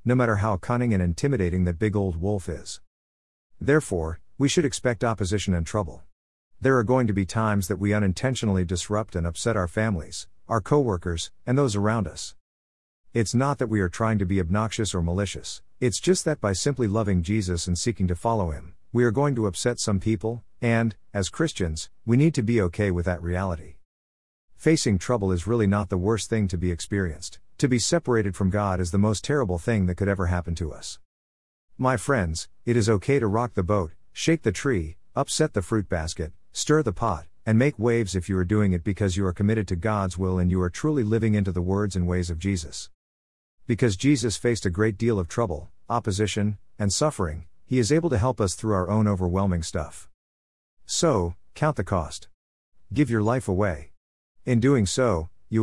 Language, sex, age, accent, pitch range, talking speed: English, male, 50-69, American, 90-115 Hz, 200 wpm